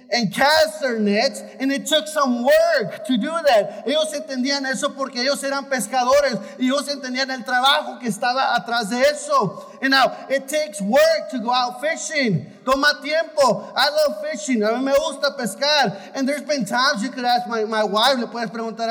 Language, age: English, 30-49